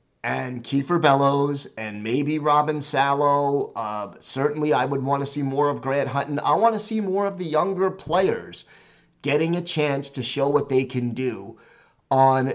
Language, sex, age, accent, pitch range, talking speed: English, male, 30-49, American, 135-185 Hz, 175 wpm